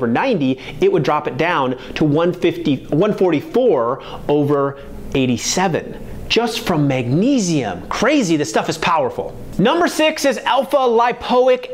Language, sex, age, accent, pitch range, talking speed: English, male, 30-49, American, 140-215 Hz, 125 wpm